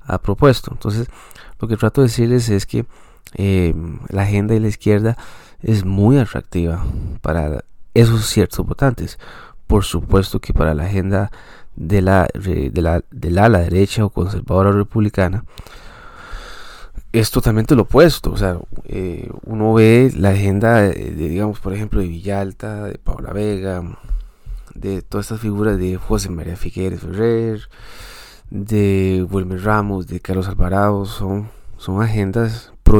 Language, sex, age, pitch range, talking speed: Spanish, male, 20-39, 95-110 Hz, 150 wpm